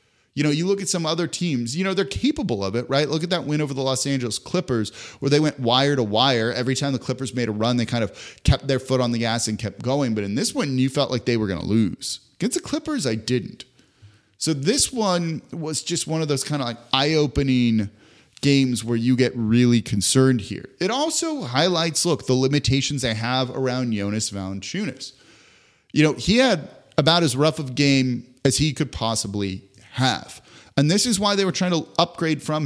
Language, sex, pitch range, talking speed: English, male, 115-145 Hz, 220 wpm